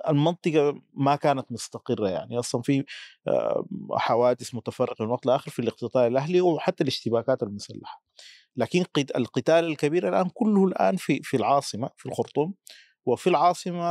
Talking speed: 135 wpm